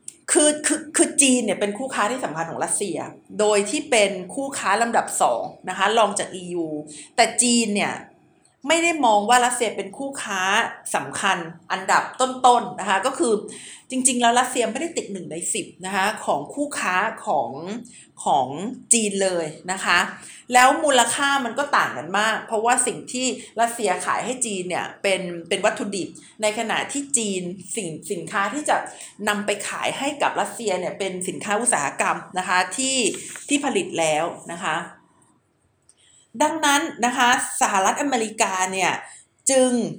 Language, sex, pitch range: Thai, female, 195-260 Hz